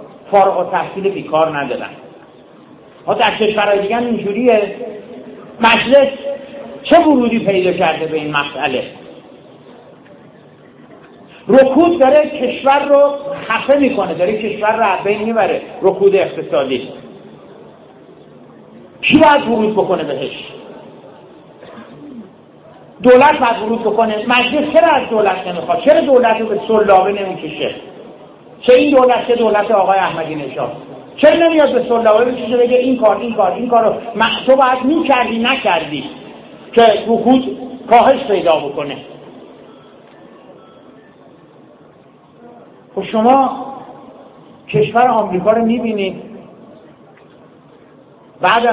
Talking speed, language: 110 wpm, Persian